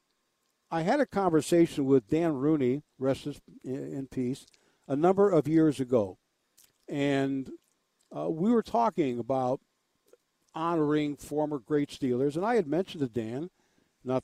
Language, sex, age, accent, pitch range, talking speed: English, male, 60-79, American, 135-175 Hz, 135 wpm